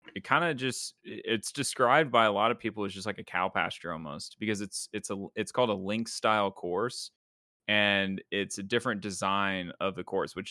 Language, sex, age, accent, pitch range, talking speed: English, male, 20-39, American, 95-115 Hz, 195 wpm